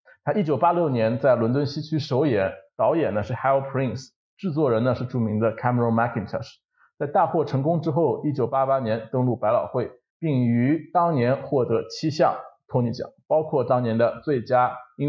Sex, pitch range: male, 115-155 Hz